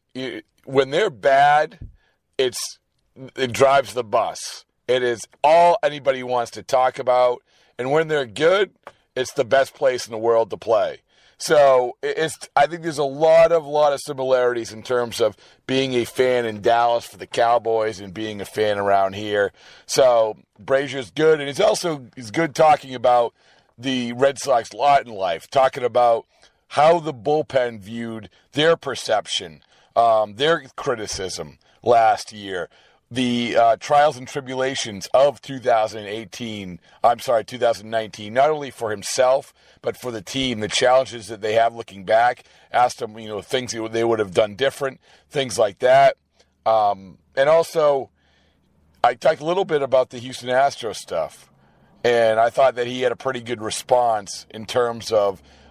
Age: 40-59